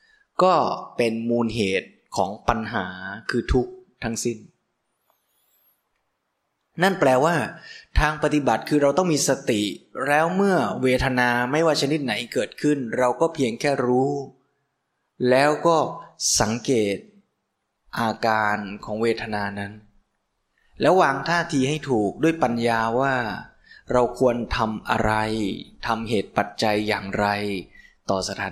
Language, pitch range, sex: Thai, 105-140 Hz, male